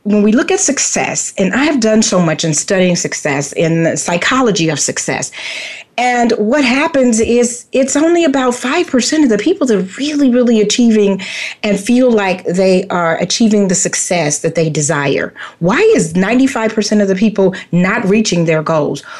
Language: English